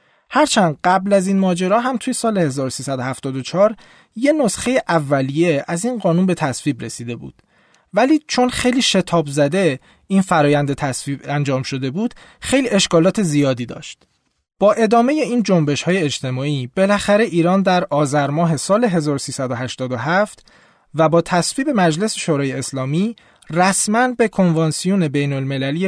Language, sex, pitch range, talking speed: Persian, male, 140-200 Hz, 130 wpm